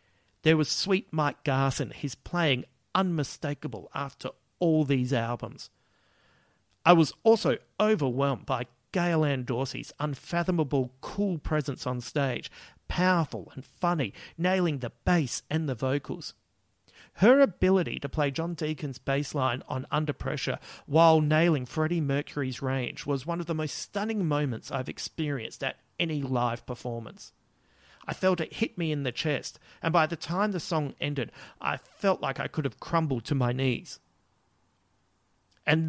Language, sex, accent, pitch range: English, male, Australian, 125-160 Hz